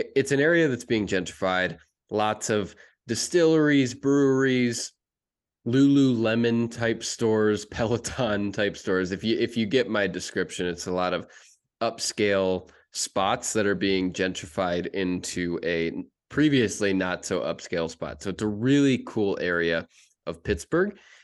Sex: male